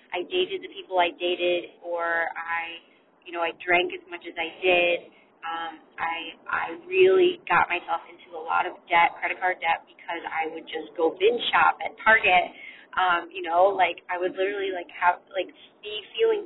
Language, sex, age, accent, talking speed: English, female, 20-39, American, 190 wpm